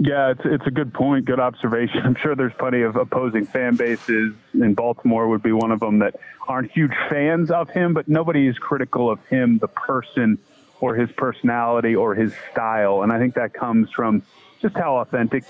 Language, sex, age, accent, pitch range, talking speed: English, male, 30-49, American, 110-130 Hz, 200 wpm